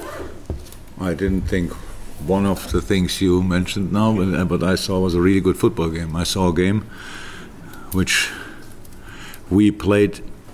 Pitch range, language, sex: 90-100 Hz, English, male